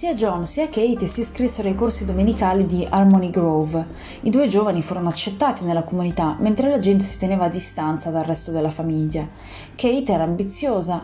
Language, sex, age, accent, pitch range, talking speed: Italian, female, 30-49, native, 165-230 Hz, 180 wpm